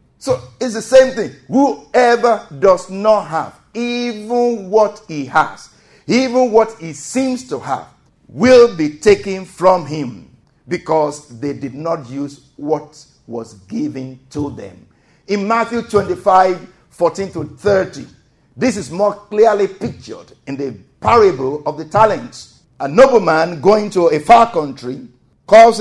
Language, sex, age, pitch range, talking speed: English, male, 50-69, 155-215 Hz, 140 wpm